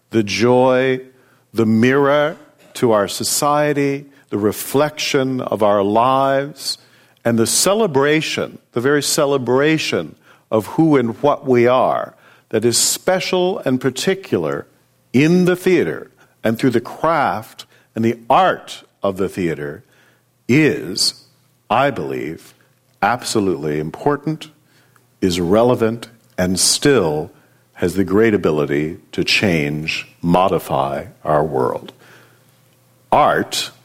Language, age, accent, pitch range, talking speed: English, 50-69, American, 105-140 Hz, 110 wpm